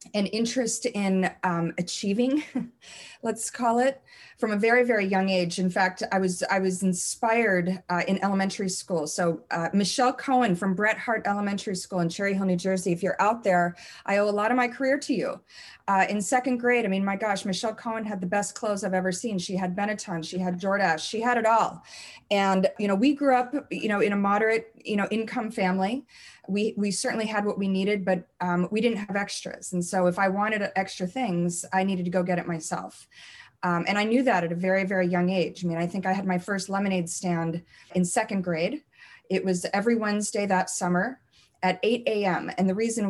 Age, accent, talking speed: 30-49, American, 220 wpm